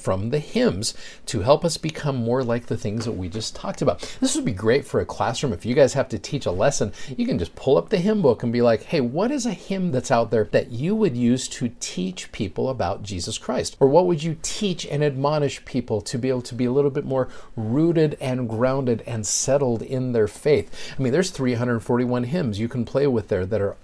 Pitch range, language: 110-145 Hz, English